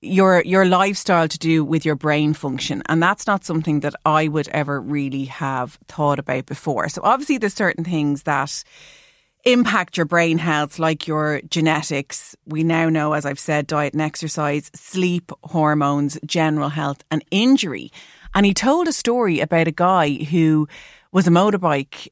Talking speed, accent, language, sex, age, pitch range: 170 wpm, Irish, English, female, 30-49, 155-185 Hz